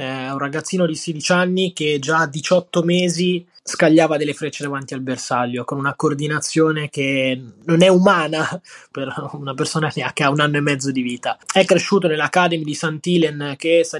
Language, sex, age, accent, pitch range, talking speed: Italian, male, 20-39, native, 135-160 Hz, 180 wpm